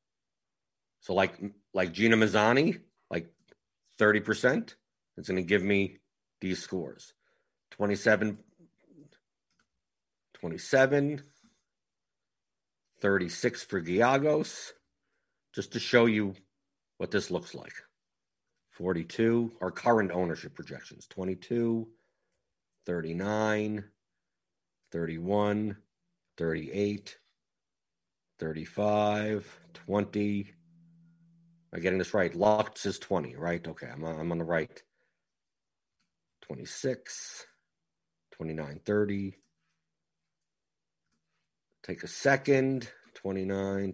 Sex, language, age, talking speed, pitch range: male, English, 50-69, 80 wpm, 90-110 Hz